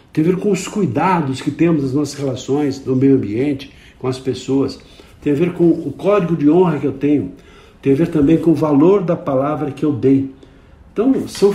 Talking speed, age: 220 wpm, 60-79